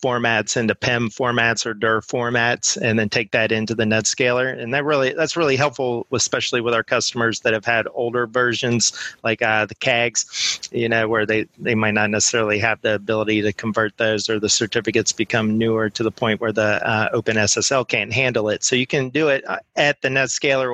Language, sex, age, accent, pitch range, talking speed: English, male, 30-49, American, 110-125 Hz, 205 wpm